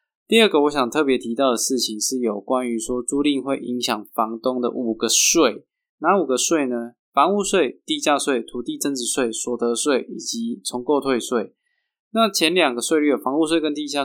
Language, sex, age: Chinese, male, 20-39